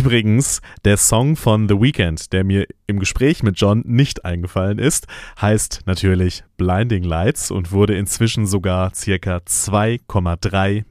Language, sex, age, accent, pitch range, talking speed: German, male, 30-49, German, 95-115 Hz, 140 wpm